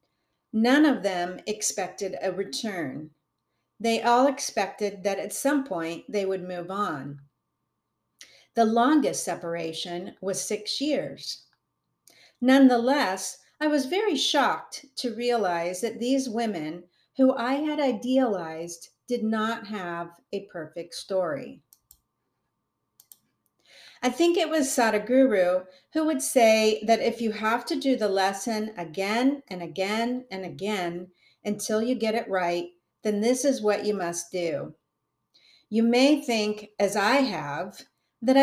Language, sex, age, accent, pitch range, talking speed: English, female, 50-69, American, 180-250 Hz, 130 wpm